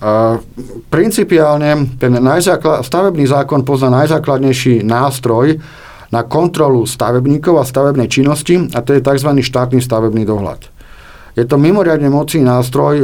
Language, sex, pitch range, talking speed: Slovak, male, 125-155 Hz, 125 wpm